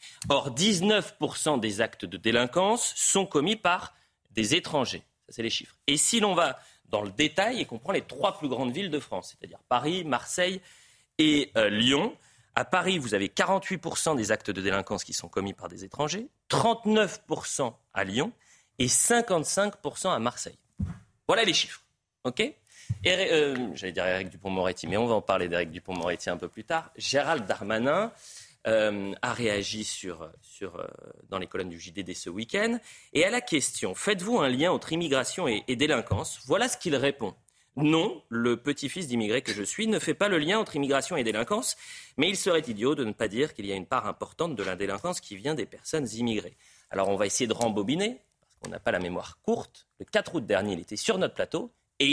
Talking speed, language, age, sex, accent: 205 wpm, French, 30-49, male, French